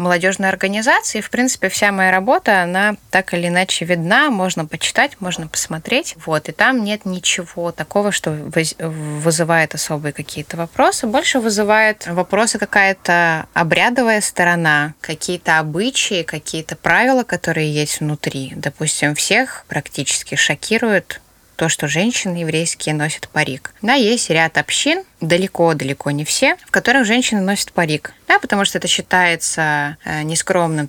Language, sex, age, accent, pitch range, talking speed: Russian, female, 20-39, native, 155-205 Hz, 135 wpm